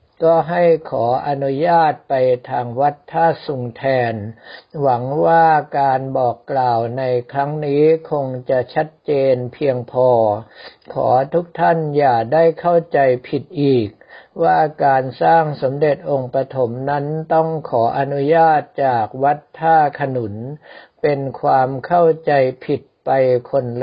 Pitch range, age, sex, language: 130-155 Hz, 60-79, male, Thai